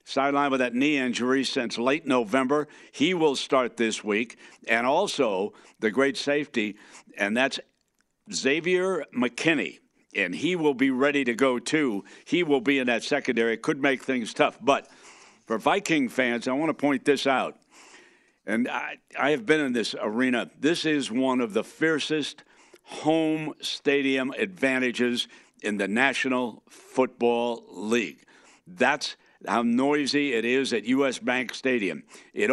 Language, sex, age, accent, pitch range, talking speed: English, male, 60-79, American, 125-150 Hz, 155 wpm